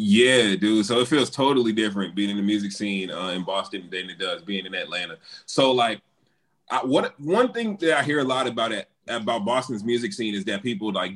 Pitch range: 100-130 Hz